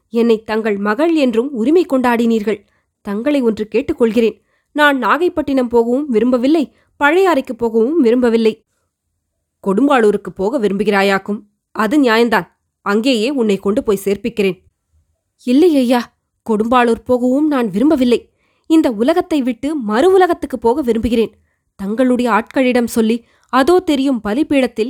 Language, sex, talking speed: Tamil, female, 105 wpm